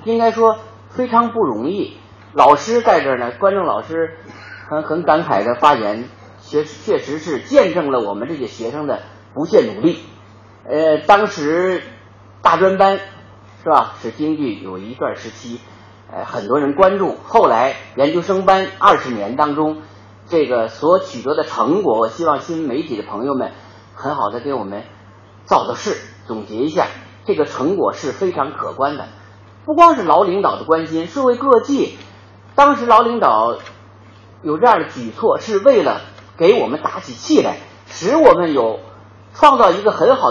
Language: Chinese